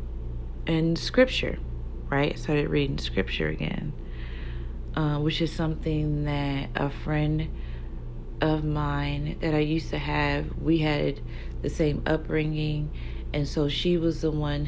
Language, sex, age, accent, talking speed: English, female, 30-49, American, 130 wpm